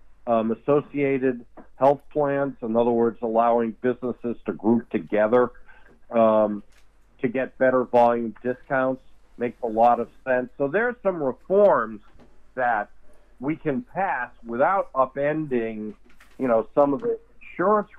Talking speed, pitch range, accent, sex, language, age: 135 wpm, 110-130 Hz, American, male, English, 50-69